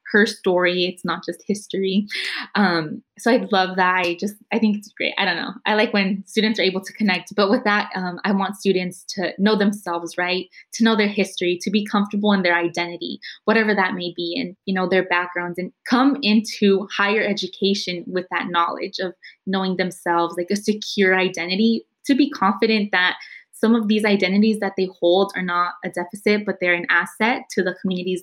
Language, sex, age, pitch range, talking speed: English, female, 20-39, 185-220 Hz, 200 wpm